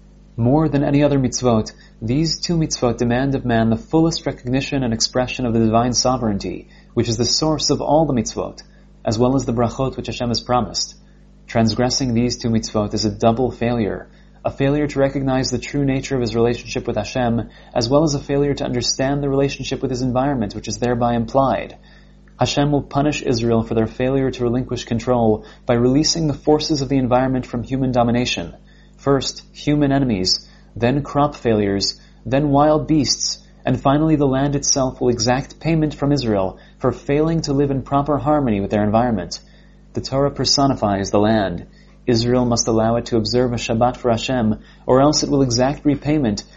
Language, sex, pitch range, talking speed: English, male, 115-140 Hz, 185 wpm